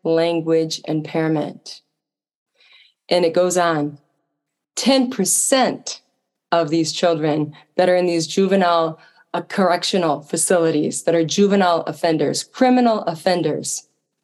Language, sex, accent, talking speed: English, female, American, 100 wpm